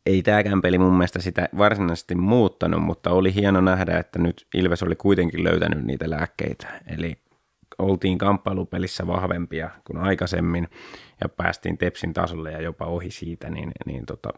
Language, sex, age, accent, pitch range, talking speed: Finnish, male, 20-39, native, 85-95 Hz, 155 wpm